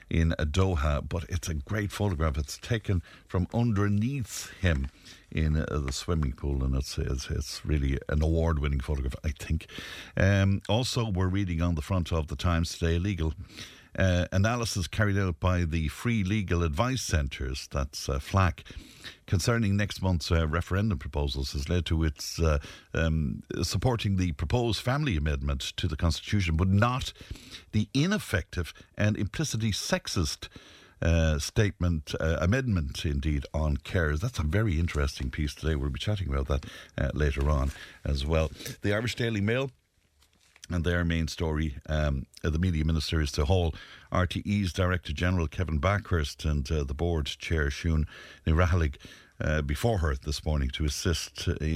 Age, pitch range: 60-79, 75-95 Hz